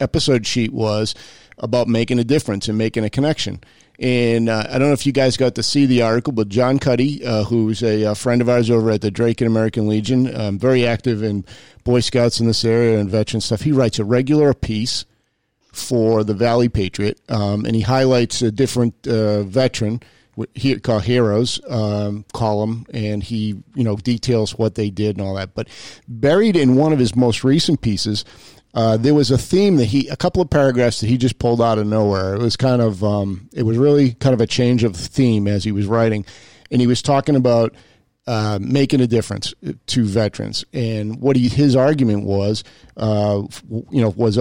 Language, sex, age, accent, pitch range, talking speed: English, male, 40-59, American, 110-125 Hz, 205 wpm